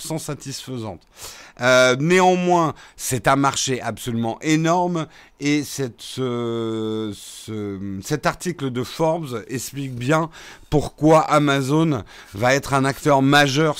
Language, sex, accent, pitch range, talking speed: French, male, French, 115-150 Hz, 115 wpm